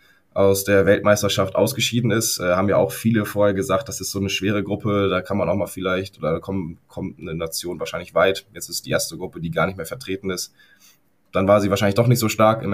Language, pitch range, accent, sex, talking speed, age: German, 90-105 Hz, German, male, 235 wpm, 20-39